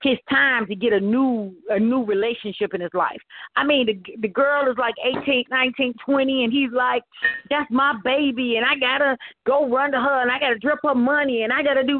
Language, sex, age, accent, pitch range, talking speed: English, female, 40-59, American, 215-280 Hz, 240 wpm